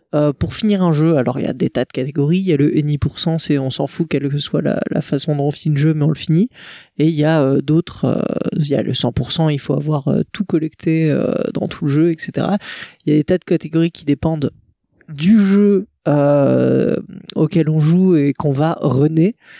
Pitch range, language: 150-195 Hz, French